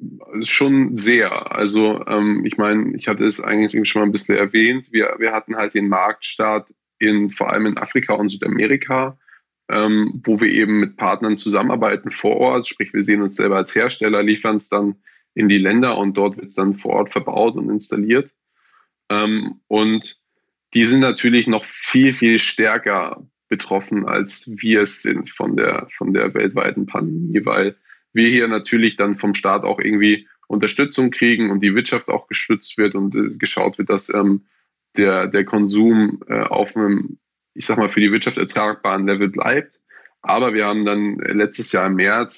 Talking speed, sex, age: 180 wpm, male, 20-39